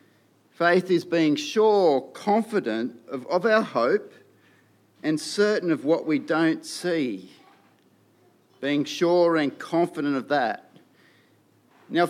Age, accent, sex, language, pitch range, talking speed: 50-69, Australian, male, English, 150-210 Hz, 115 wpm